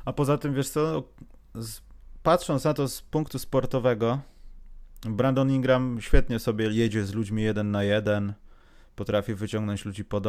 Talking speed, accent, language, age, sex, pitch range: 145 wpm, native, Polish, 30-49, male, 100-135 Hz